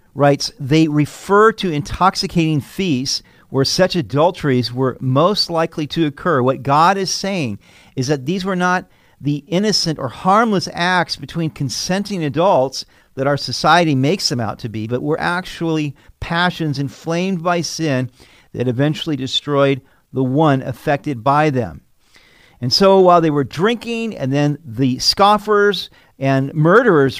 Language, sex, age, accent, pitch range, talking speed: English, male, 50-69, American, 135-180 Hz, 145 wpm